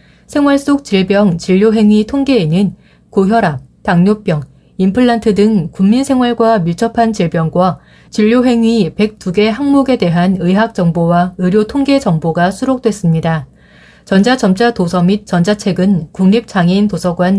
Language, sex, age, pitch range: Korean, female, 30-49, 175-230 Hz